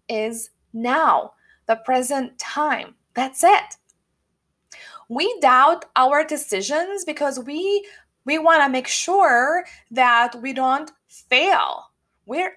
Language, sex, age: English, female, 20-39